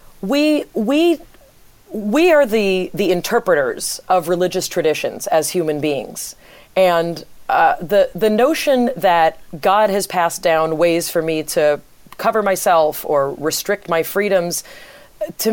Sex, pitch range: female, 170-230 Hz